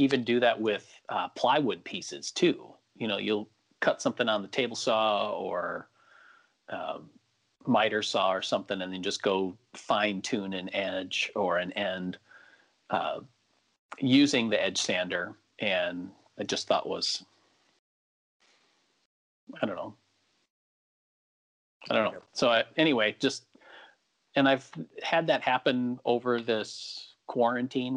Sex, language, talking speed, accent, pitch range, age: male, English, 135 wpm, American, 105-125 Hz, 40-59